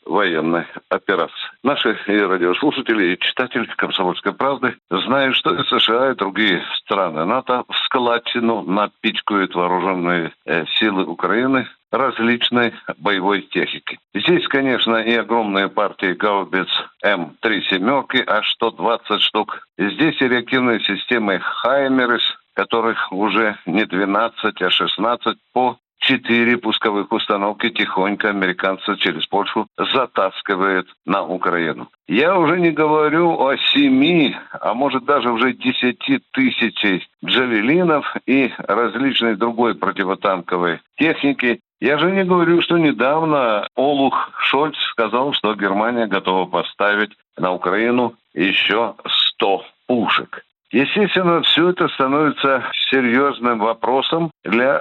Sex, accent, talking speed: male, native, 110 wpm